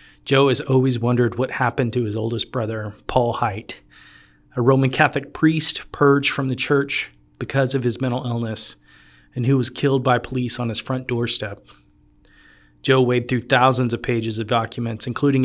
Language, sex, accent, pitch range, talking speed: English, male, American, 110-130 Hz, 170 wpm